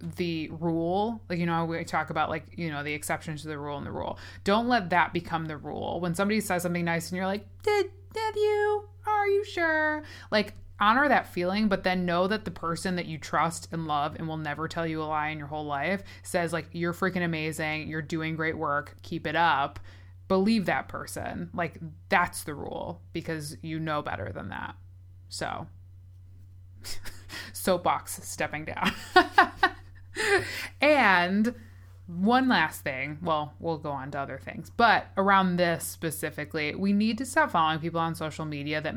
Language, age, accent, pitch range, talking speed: English, 20-39, American, 145-185 Hz, 185 wpm